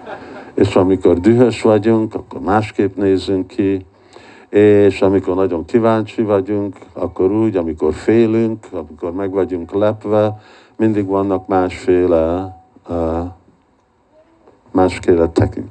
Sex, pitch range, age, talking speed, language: male, 85-100 Hz, 50-69, 95 wpm, Hungarian